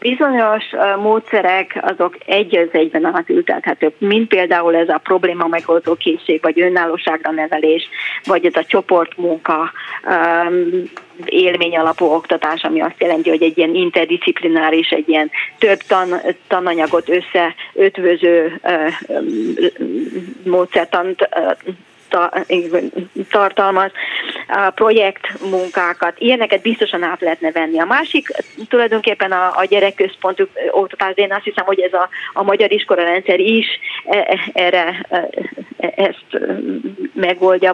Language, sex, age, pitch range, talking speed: Hungarian, female, 30-49, 175-205 Hz, 105 wpm